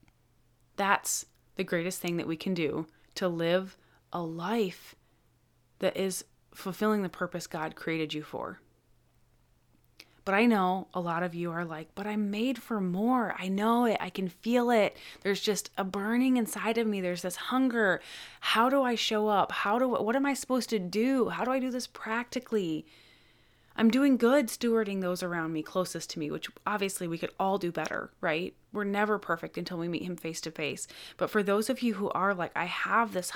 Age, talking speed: 20-39, 200 wpm